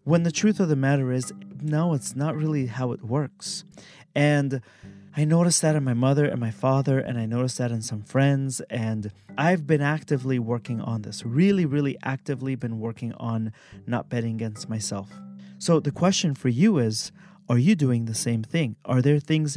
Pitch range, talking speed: 120-155 Hz, 195 wpm